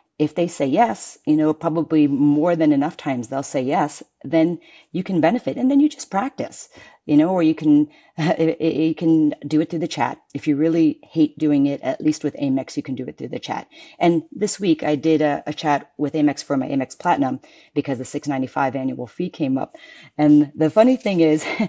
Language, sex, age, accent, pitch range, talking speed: English, female, 40-59, American, 145-180 Hz, 220 wpm